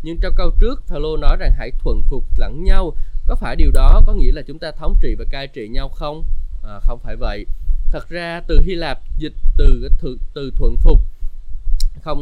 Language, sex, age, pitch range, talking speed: Vietnamese, male, 20-39, 95-155 Hz, 215 wpm